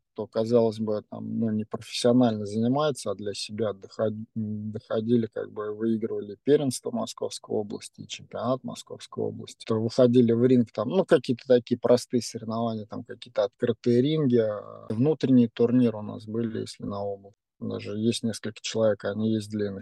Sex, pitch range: male, 110-130 Hz